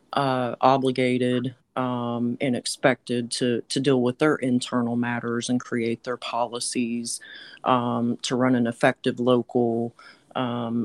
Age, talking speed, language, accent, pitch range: 40-59, 125 wpm, English, American, 115-125 Hz